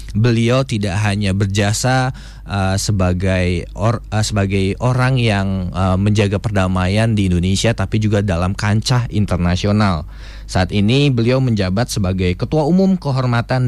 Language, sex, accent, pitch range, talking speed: English, male, Indonesian, 95-125 Hz, 125 wpm